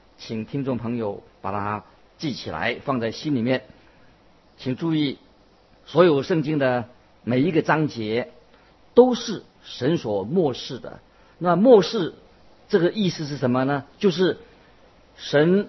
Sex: male